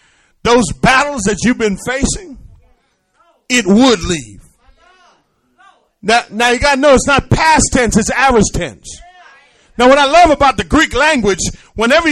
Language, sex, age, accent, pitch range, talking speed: English, male, 40-59, American, 175-285 Hz, 155 wpm